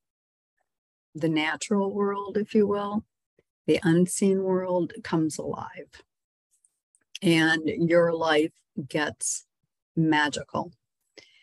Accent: American